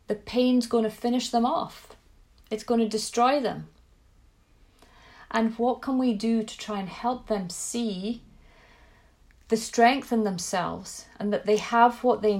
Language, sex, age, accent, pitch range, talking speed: English, female, 30-49, British, 195-230 Hz, 160 wpm